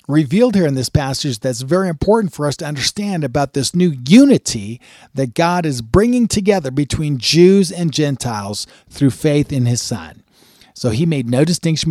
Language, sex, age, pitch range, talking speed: English, male, 50-69, 125-175 Hz, 175 wpm